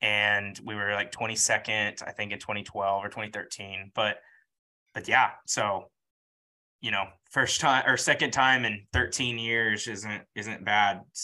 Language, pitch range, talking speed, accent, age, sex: English, 100-130 Hz, 150 wpm, American, 20-39, male